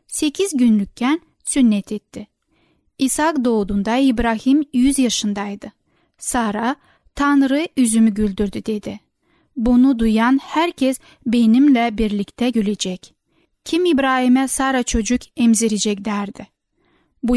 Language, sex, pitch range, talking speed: Turkish, female, 220-275 Hz, 95 wpm